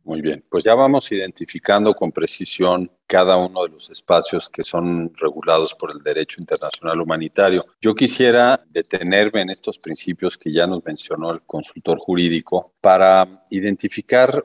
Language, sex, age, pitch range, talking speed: Spanish, male, 50-69, 90-115 Hz, 150 wpm